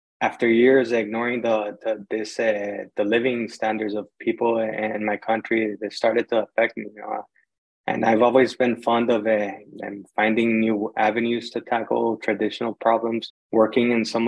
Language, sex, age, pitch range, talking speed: English, male, 20-39, 110-120 Hz, 135 wpm